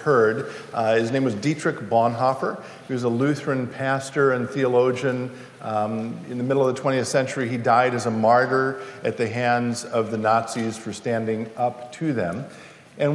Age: 50-69